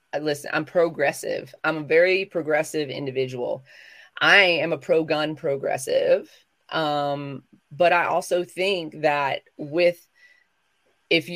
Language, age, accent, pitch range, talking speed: English, 30-49, American, 145-175 Hz, 110 wpm